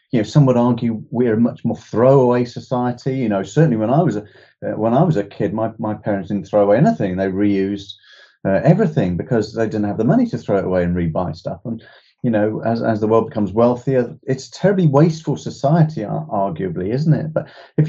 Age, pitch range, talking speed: 30-49, 100-145 Hz, 210 wpm